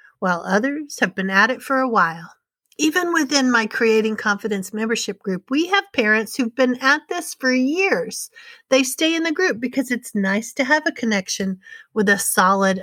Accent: American